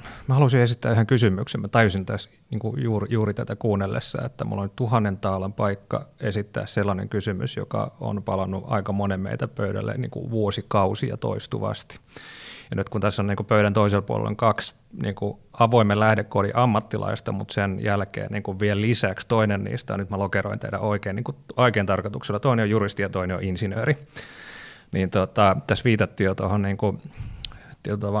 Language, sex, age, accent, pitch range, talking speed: Finnish, male, 30-49, native, 100-115 Hz, 170 wpm